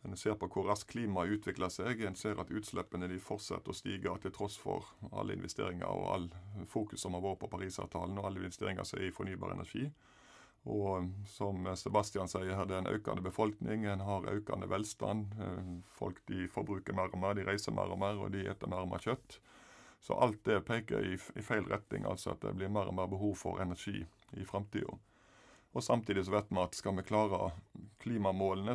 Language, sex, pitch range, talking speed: English, male, 95-105 Hz, 195 wpm